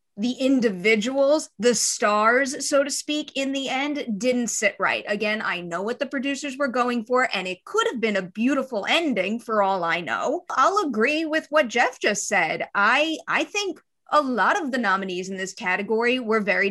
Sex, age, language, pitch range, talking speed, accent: female, 30-49, English, 210-285 Hz, 195 wpm, American